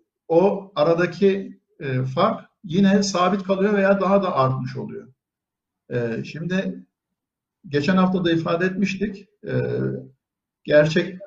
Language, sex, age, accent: Turkish, male, 60-79, native